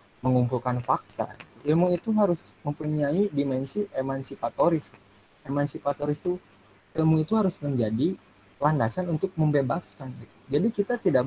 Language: Indonesian